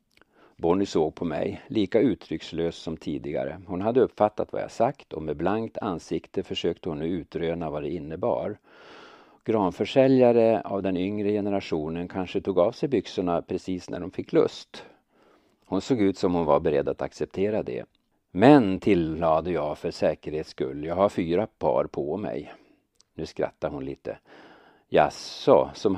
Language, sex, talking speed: Swedish, male, 155 wpm